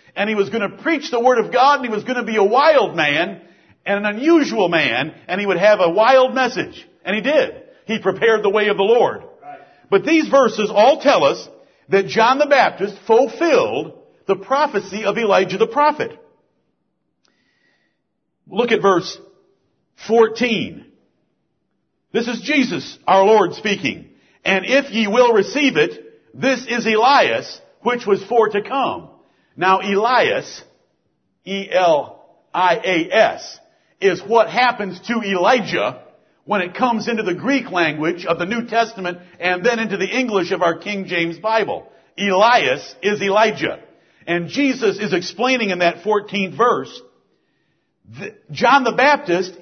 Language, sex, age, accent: English, male, 50-69, American